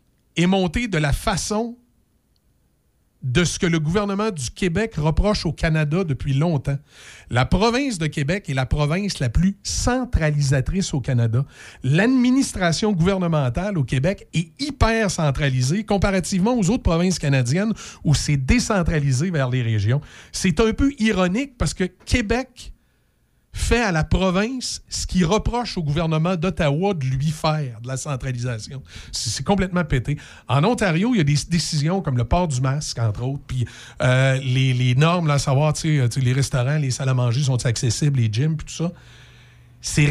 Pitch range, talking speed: 135-195 Hz, 165 wpm